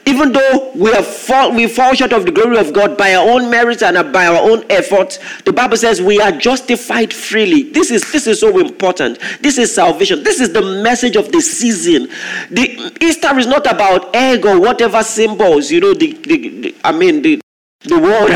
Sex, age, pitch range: male, 40-59, 220-330 Hz